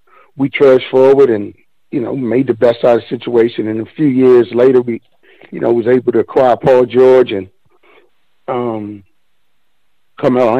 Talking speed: 170 wpm